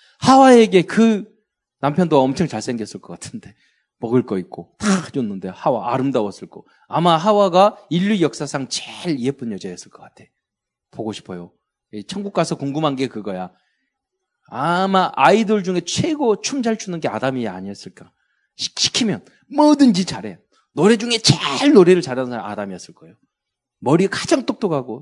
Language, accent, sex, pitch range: Korean, native, male, 120-200 Hz